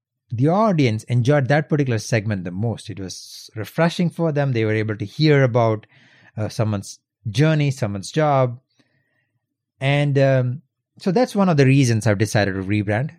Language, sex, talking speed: English, male, 165 wpm